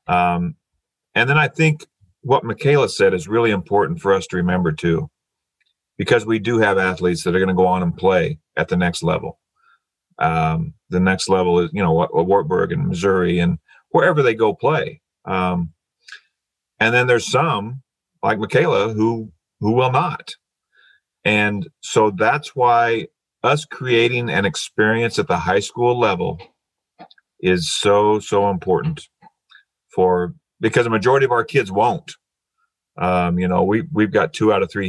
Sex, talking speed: male, 160 wpm